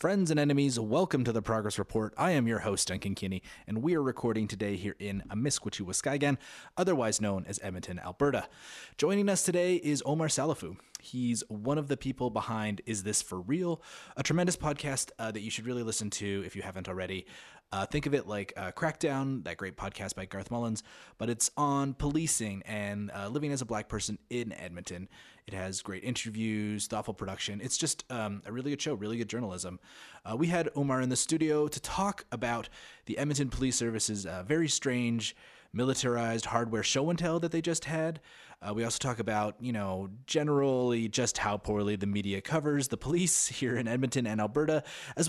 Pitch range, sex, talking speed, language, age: 105-140 Hz, male, 195 wpm, English, 20-39